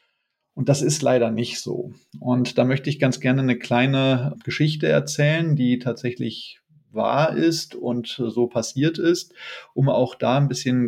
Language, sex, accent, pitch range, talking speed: German, male, German, 115-140 Hz, 155 wpm